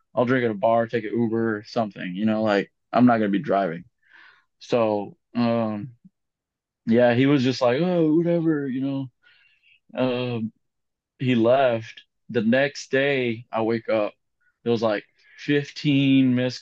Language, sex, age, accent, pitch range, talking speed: English, male, 20-39, American, 115-140 Hz, 160 wpm